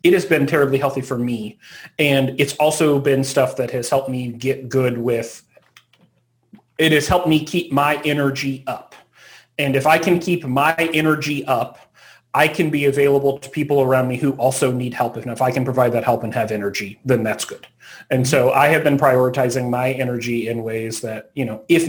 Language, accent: English, American